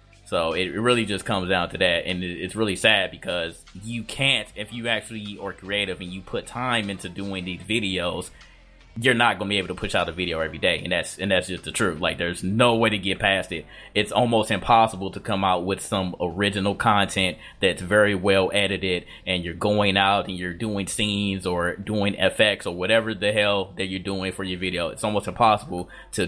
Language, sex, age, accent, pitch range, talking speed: English, male, 20-39, American, 90-105 Hz, 215 wpm